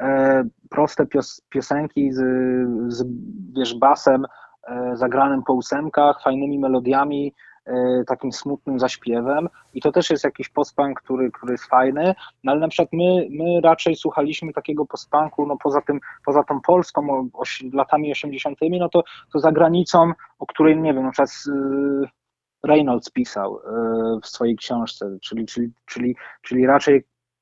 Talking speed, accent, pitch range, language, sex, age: 155 wpm, native, 135-165 Hz, Polish, male, 20-39